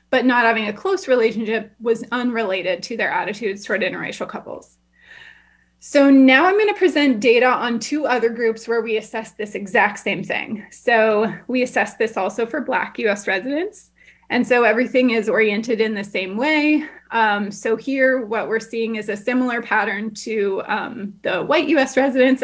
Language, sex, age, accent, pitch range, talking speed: English, female, 20-39, American, 220-265 Hz, 175 wpm